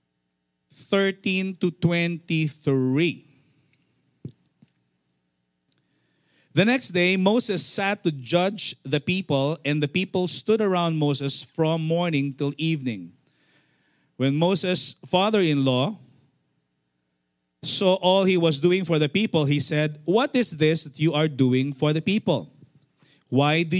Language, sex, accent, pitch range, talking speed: English, male, Filipino, 145-200 Hz, 120 wpm